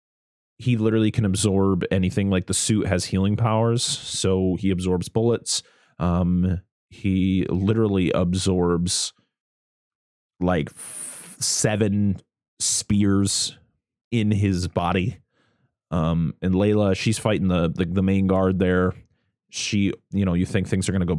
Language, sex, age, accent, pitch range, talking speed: English, male, 30-49, American, 90-110 Hz, 135 wpm